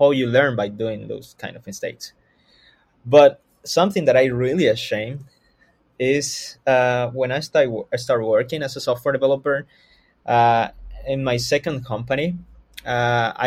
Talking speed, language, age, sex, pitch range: 145 wpm, English, 20-39, male, 120-145 Hz